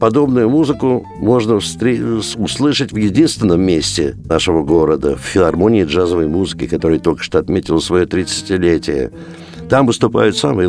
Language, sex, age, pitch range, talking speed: Russian, male, 60-79, 80-125 Hz, 130 wpm